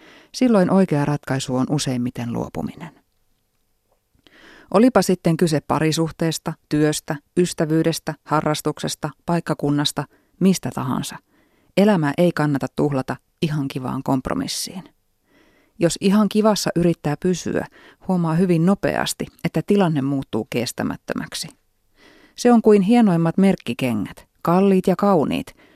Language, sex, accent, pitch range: Finnish, female, native, 145-190 Hz